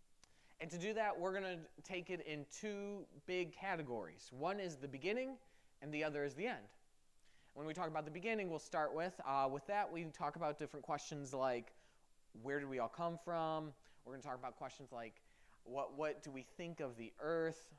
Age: 20-39